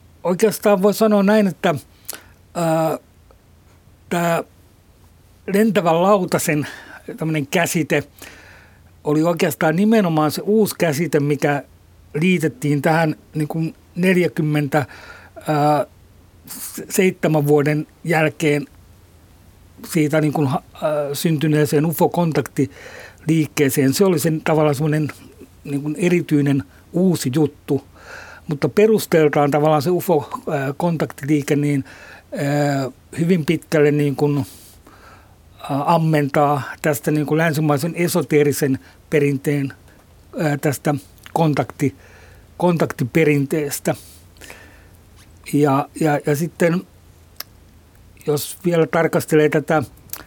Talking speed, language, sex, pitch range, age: 75 wpm, Finnish, male, 130-160 Hz, 60-79